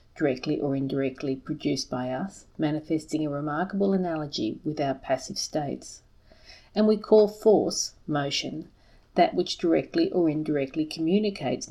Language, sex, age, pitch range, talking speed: English, female, 40-59, 140-180 Hz, 130 wpm